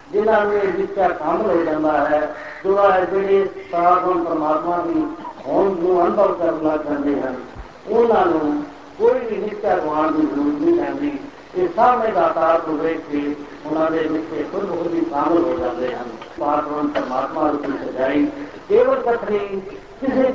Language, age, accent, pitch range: Hindi, 50-69, native, 165-260 Hz